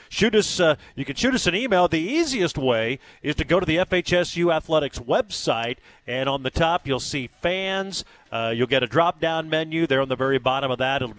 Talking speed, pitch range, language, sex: 220 wpm, 130-175 Hz, English, male